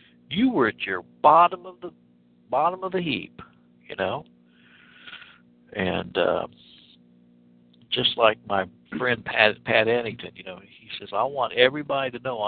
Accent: American